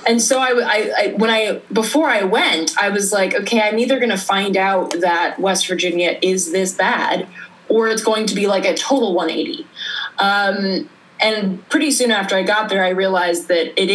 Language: English